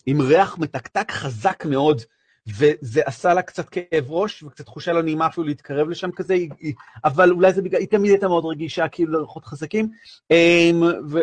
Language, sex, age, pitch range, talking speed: Hebrew, male, 40-59, 130-170 Hz, 175 wpm